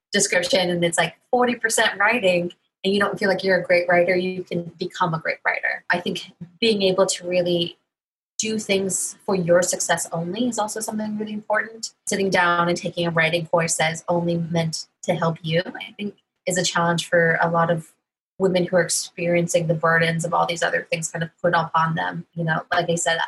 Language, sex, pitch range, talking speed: English, female, 170-200 Hz, 210 wpm